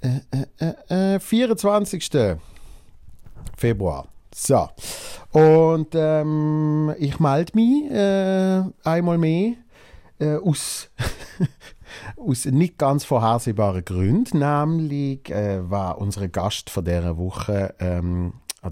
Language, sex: German, male